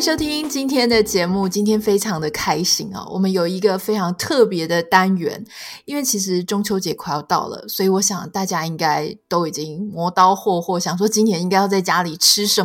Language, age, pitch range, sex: Chinese, 20-39, 175-215 Hz, female